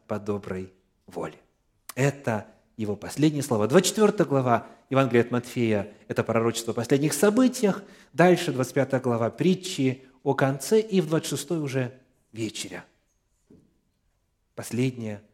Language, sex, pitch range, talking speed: Russian, male, 105-155 Hz, 115 wpm